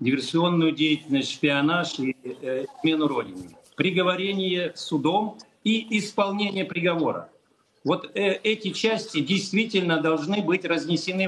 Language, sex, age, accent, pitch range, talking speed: Russian, male, 50-69, native, 160-200 Hz, 105 wpm